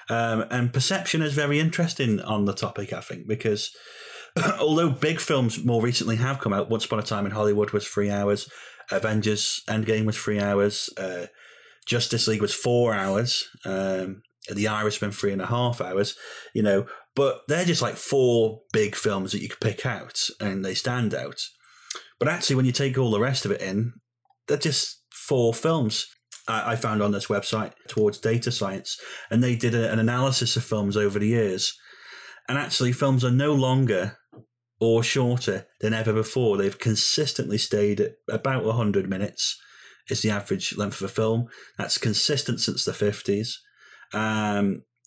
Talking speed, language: 175 wpm, English